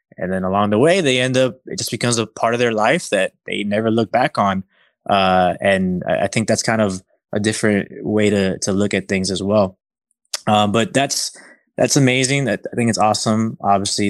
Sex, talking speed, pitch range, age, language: male, 215 wpm, 100-125 Hz, 20-39, English